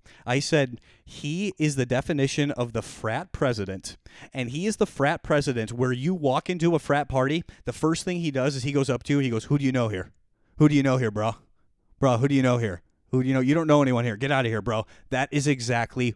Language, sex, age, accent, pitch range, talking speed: English, male, 30-49, American, 125-205 Hz, 265 wpm